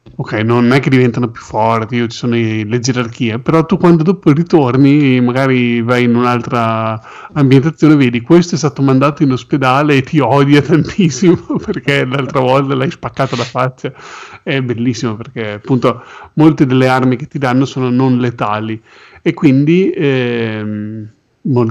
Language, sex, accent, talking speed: Italian, male, native, 155 wpm